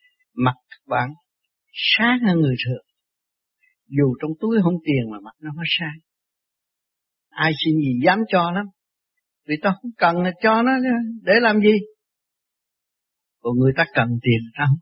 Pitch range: 145-220 Hz